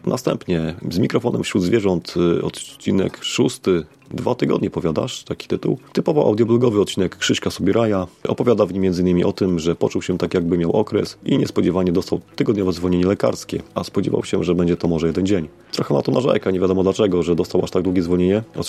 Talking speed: 190 wpm